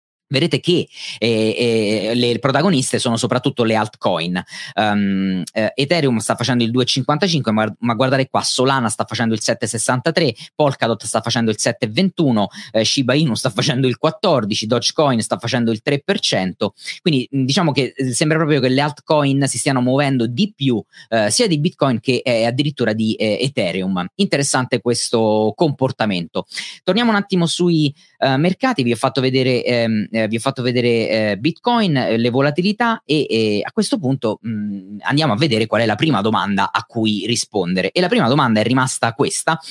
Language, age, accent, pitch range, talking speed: Italian, 30-49, native, 110-150 Hz, 165 wpm